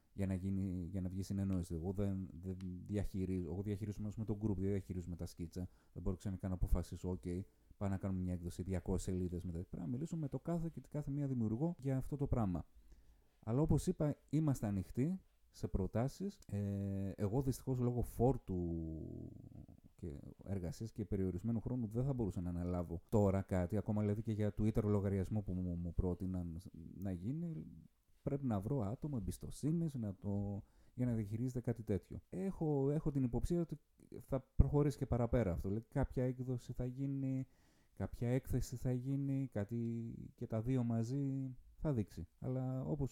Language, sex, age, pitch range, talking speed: Greek, male, 30-49, 95-130 Hz, 160 wpm